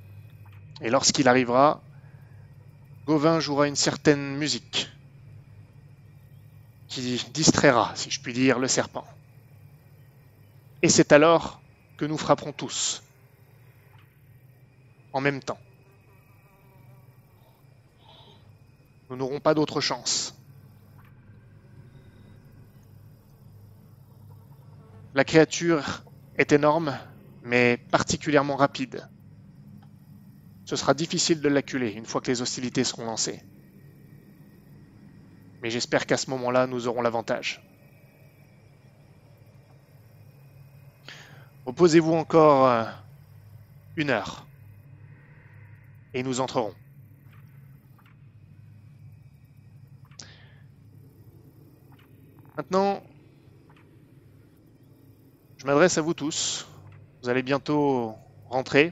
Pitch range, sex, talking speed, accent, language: 125-140 Hz, male, 75 wpm, French, French